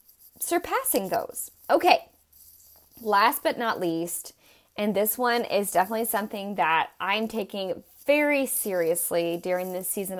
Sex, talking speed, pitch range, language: female, 125 wpm, 210-285 Hz, English